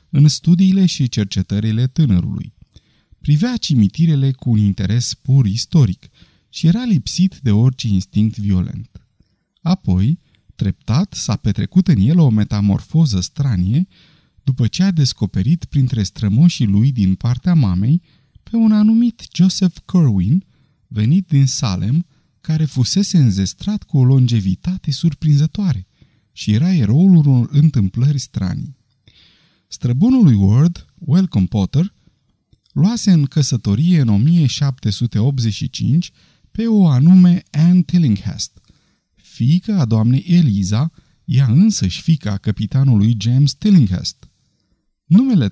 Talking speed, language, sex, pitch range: 115 wpm, Romanian, male, 110-170 Hz